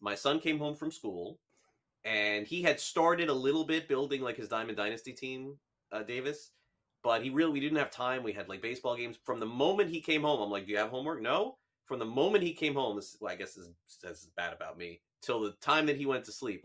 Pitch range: 105-145 Hz